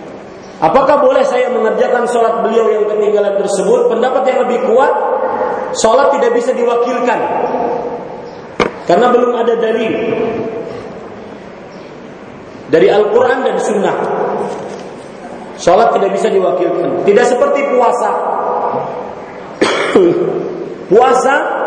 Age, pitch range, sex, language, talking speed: 40-59, 220-275 Hz, male, Malay, 90 wpm